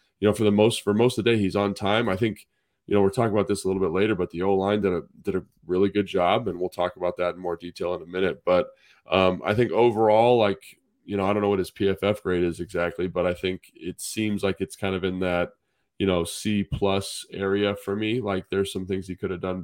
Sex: male